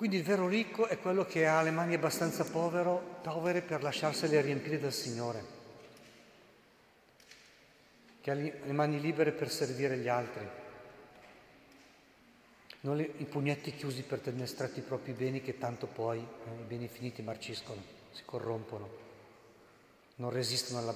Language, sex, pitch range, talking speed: Italian, male, 125-155 Hz, 145 wpm